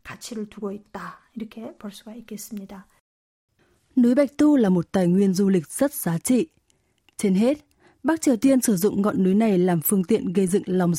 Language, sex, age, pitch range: Vietnamese, female, 20-39, 185-235 Hz